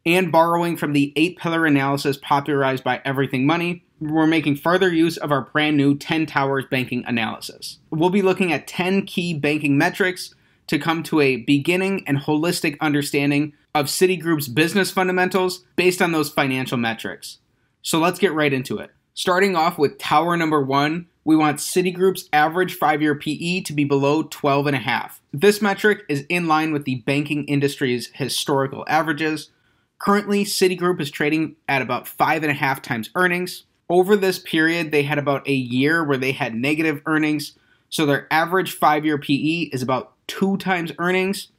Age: 30-49